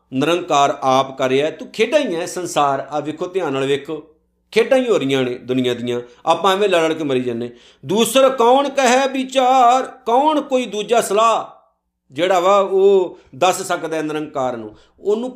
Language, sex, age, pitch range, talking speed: Punjabi, male, 50-69, 135-210 Hz, 170 wpm